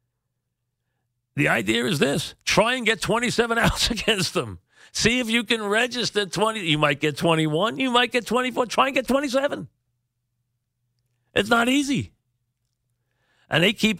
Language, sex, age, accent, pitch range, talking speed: English, male, 50-69, American, 120-165 Hz, 150 wpm